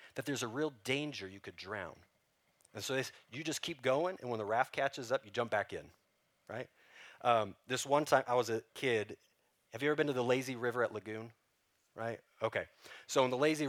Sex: male